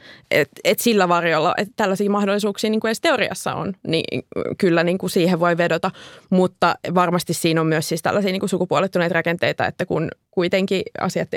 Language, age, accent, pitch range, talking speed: Finnish, 20-39, native, 170-205 Hz, 170 wpm